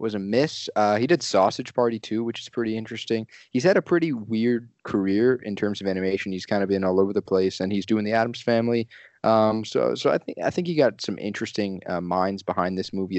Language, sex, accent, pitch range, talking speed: English, male, American, 95-115 Hz, 240 wpm